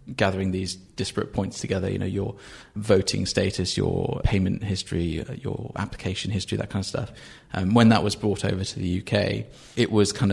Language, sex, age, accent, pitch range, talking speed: English, male, 20-39, British, 95-110 Hz, 190 wpm